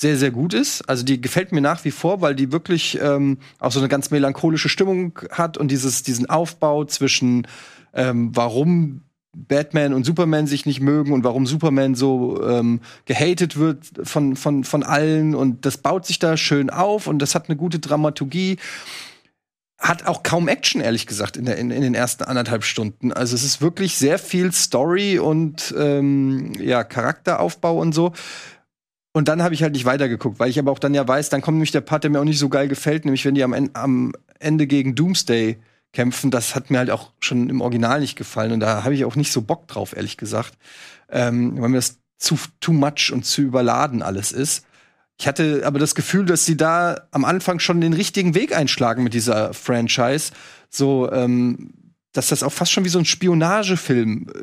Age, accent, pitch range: 30-49, German, 130-160 Hz